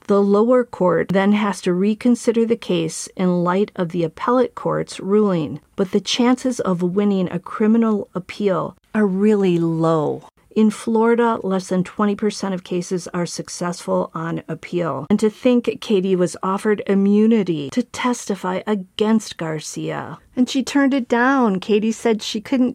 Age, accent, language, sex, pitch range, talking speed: 40-59, American, English, female, 175-225 Hz, 155 wpm